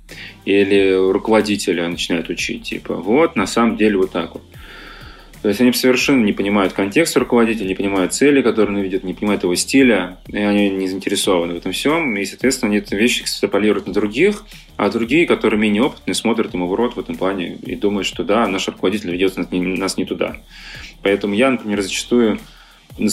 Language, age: Russian, 20-39